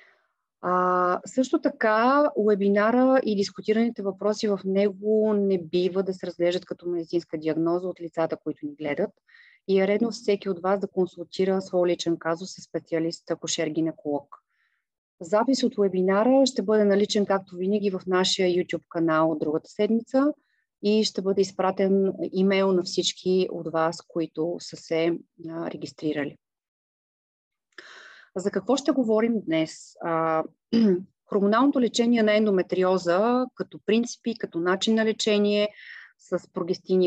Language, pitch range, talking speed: Bulgarian, 165-210 Hz, 135 wpm